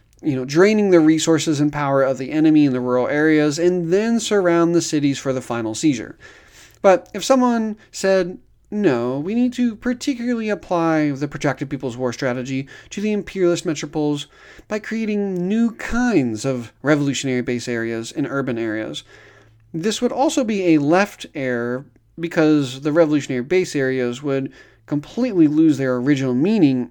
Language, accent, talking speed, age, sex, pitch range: English, American, 160 wpm, 30-49, male, 130-195 Hz